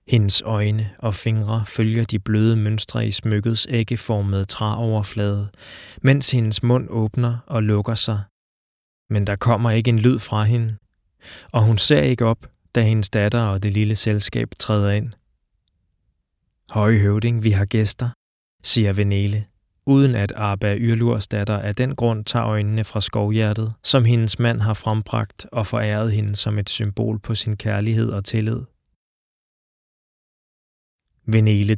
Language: Danish